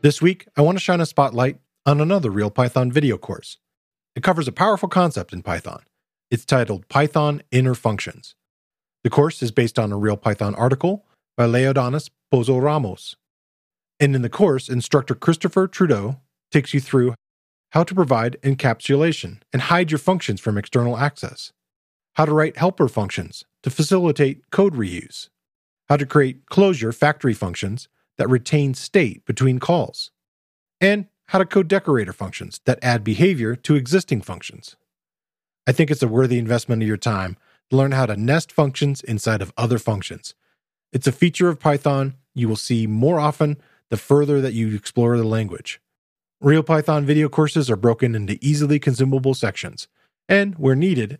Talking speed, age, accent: 165 wpm, 40-59, American